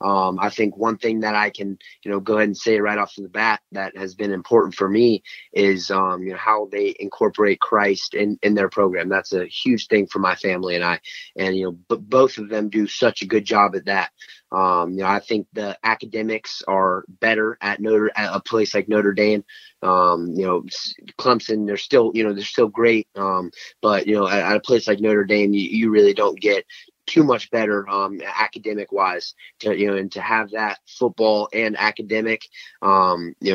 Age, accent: 20-39, American